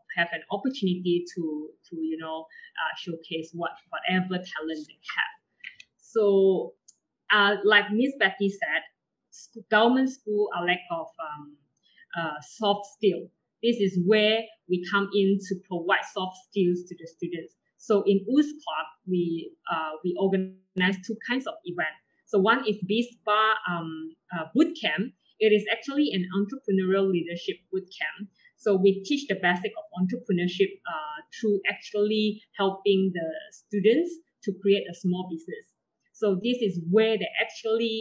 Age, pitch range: 20-39, 180-215 Hz